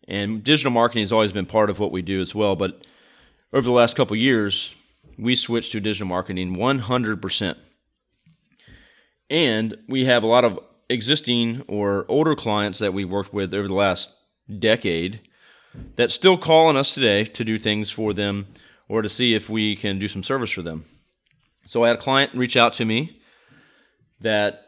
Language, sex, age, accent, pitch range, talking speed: English, male, 30-49, American, 100-120 Hz, 180 wpm